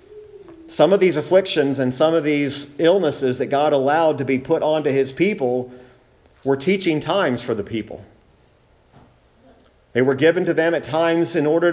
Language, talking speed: English, 170 wpm